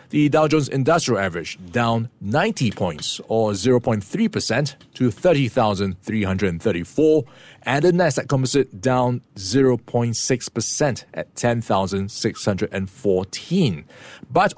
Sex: male